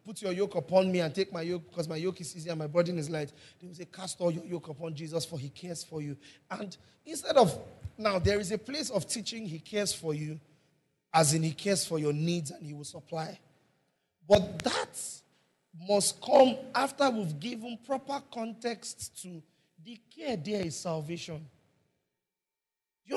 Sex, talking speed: male, 190 wpm